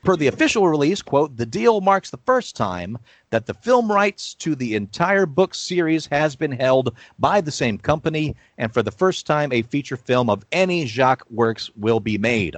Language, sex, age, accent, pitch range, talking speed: English, male, 40-59, American, 110-155 Hz, 200 wpm